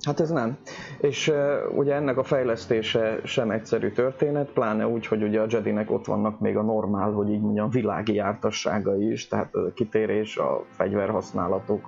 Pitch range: 105-125 Hz